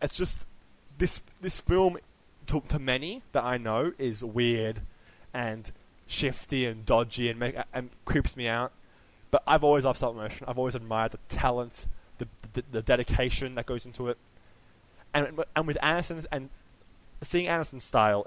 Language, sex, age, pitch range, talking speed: English, male, 20-39, 110-140 Hz, 165 wpm